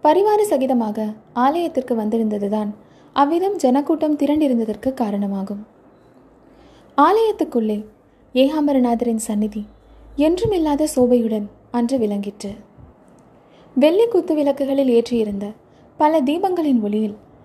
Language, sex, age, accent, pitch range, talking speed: Tamil, female, 20-39, native, 225-305 Hz, 75 wpm